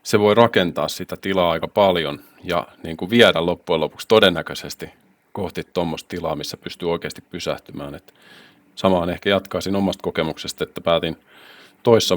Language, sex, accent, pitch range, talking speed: Finnish, male, native, 85-95 Hz, 150 wpm